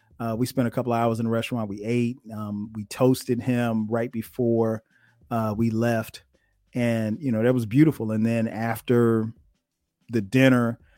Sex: male